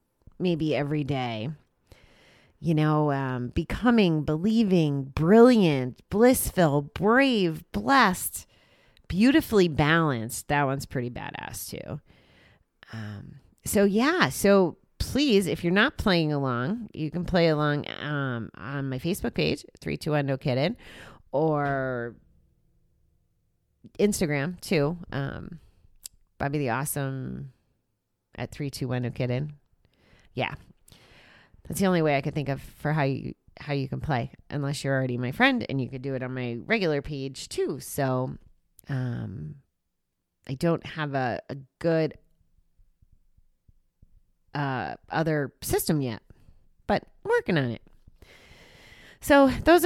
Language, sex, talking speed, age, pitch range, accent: English, female, 125 wpm, 30-49, 130-190 Hz, American